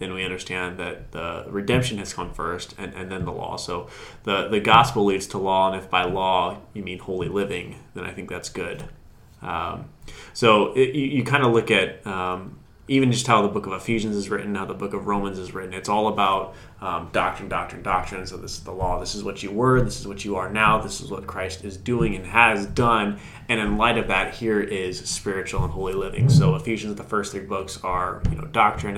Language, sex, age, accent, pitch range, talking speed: English, male, 20-39, American, 95-115 Hz, 230 wpm